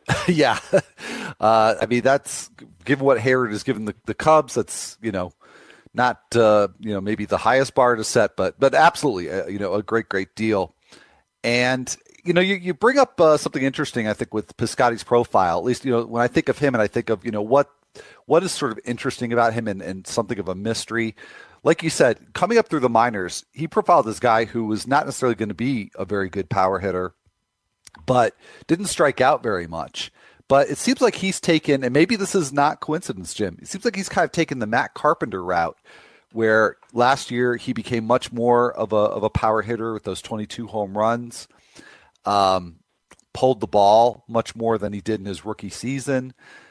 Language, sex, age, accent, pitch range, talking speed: English, male, 40-59, American, 105-135 Hz, 210 wpm